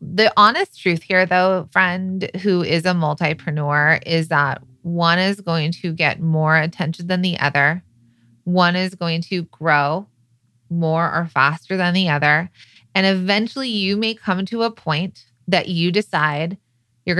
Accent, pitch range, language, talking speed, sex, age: American, 160-195 Hz, English, 155 wpm, female, 20-39